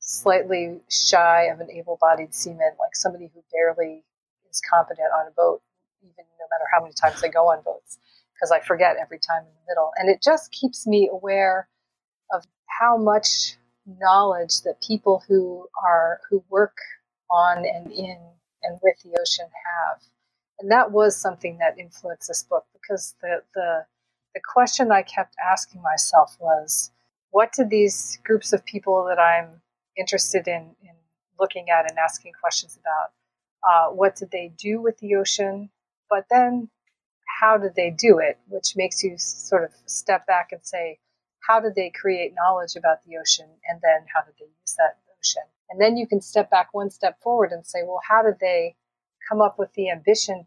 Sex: female